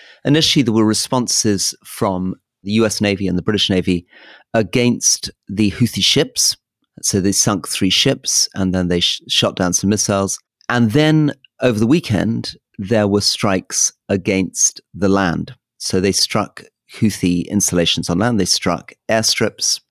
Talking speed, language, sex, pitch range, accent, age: 150 wpm, English, male, 95-125 Hz, British, 40-59